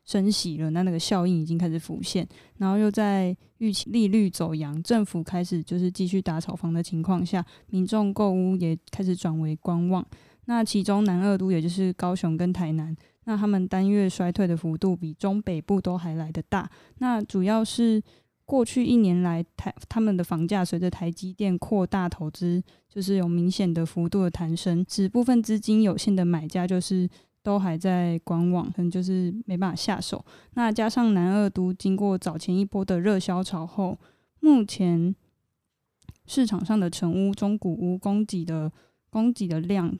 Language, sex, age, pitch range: Chinese, female, 20-39, 175-205 Hz